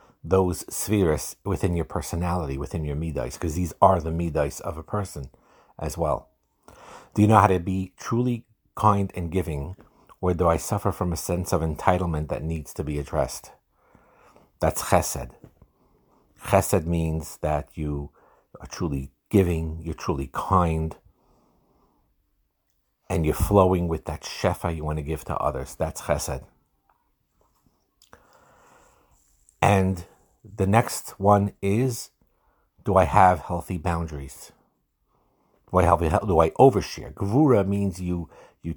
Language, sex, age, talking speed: English, male, 50-69, 135 wpm